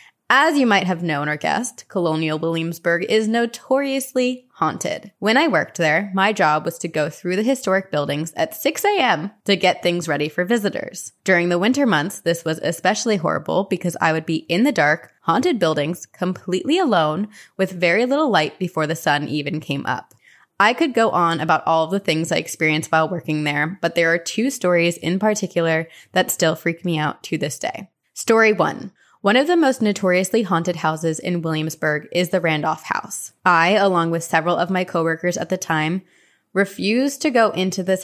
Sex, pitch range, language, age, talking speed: female, 165-205 Hz, English, 20-39, 190 wpm